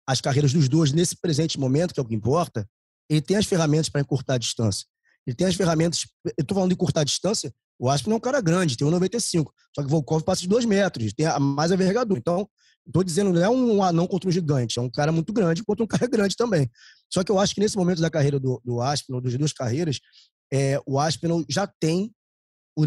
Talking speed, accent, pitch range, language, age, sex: 240 wpm, Brazilian, 140-180 Hz, Portuguese, 20-39, male